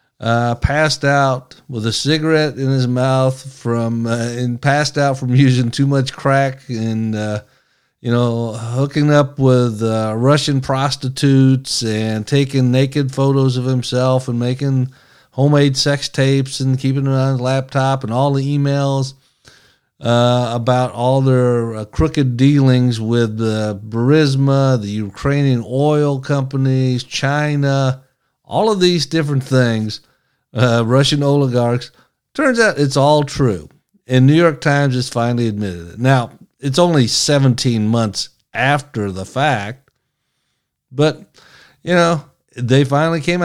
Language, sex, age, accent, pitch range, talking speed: English, male, 50-69, American, 125-145 Hz, 140 wpm